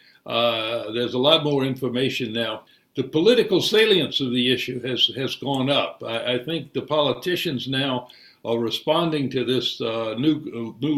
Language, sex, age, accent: English, male, 60-79, American